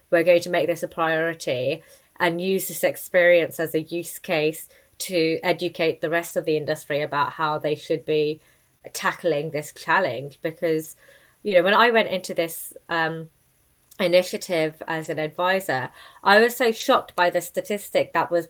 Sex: female